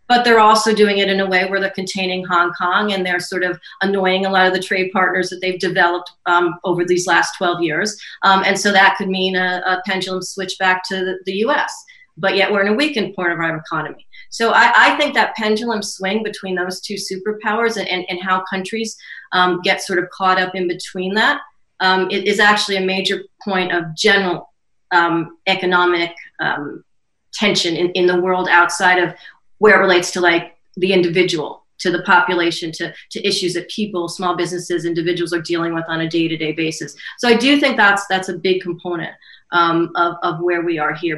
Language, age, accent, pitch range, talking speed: English, 40-59, American, 175-195 Hz, 210 wpm